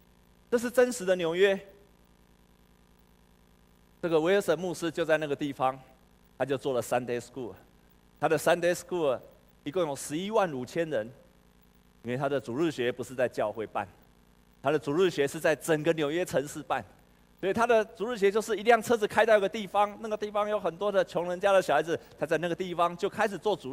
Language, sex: Chinese, male